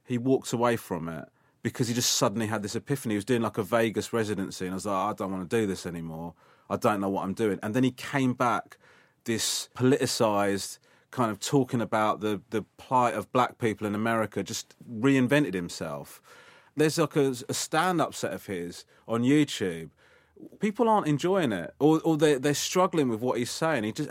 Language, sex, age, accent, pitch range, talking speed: English, male, 30-49, British, 115-155 Hz, 205 wpm